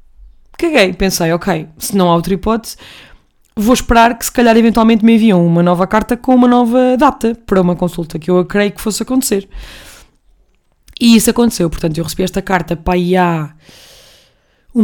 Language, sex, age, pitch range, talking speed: Portuguese, female, 20-39, 175-230 Hz, 180 wpm